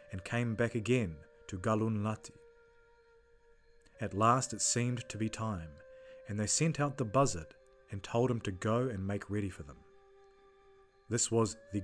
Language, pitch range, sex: English, 110-160 Hz, male